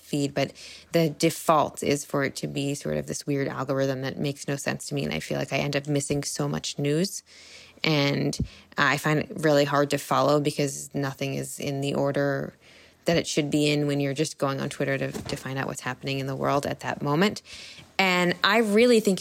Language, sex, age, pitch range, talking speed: English, female, 20-39, 140-170 Hz, 225 wpm